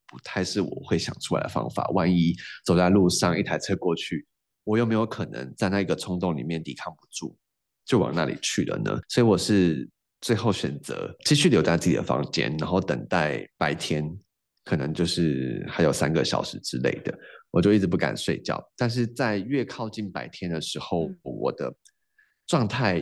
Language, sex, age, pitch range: Chinese, male, 30-49, 85-110 Hz